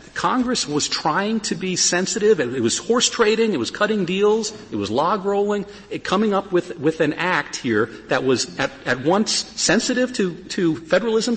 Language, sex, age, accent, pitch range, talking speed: English, male, 50-69, American, 120-180 Hz, 185 wpm